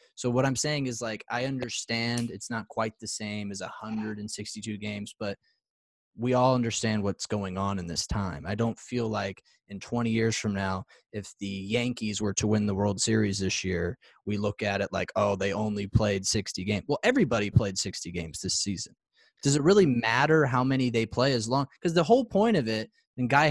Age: 20-39